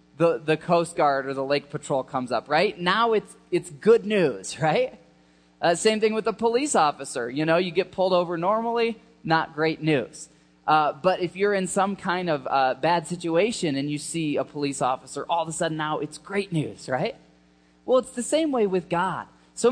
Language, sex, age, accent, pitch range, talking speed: English, male, 20-39, American, 155-205 Hz, 205 wpm